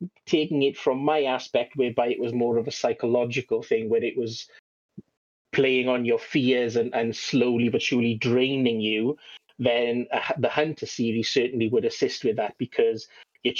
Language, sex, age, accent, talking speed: English, male, 30-49, British, 170 wpm